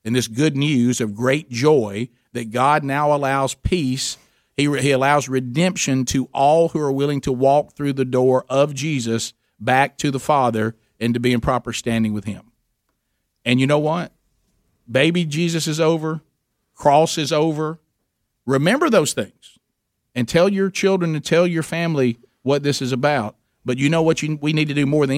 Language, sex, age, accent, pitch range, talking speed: English, male, 50-69, American, 120-150 Hz, 185 wpm